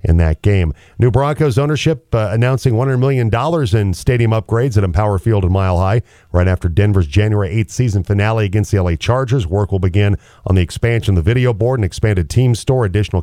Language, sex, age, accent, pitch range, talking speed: English, male, 40-59, American, 90-120 Hz, 205 wpm